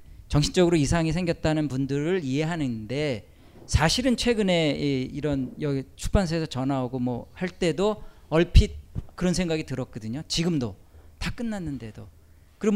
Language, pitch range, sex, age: Korean, 125-195 Hz, male, 40-59